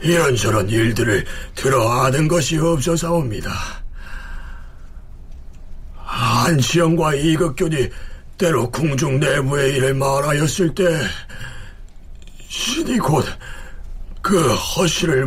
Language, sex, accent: Korean, male, native